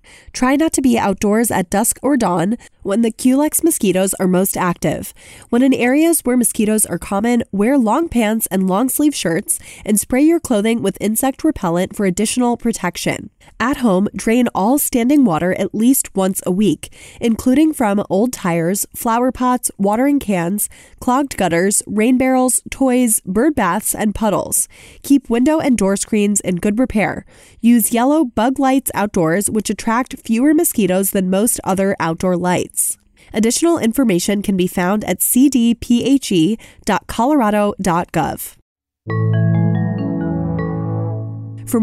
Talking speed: 140 wpm